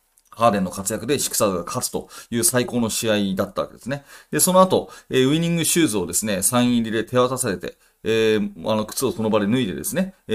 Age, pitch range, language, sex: 30-49, 105-155 Hz, Japanese, male